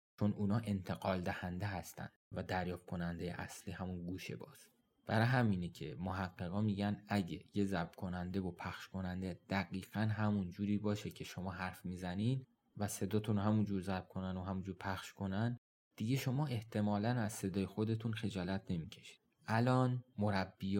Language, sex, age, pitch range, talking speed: Persian, male, 20-39, 95-105 Hz, 150 wpm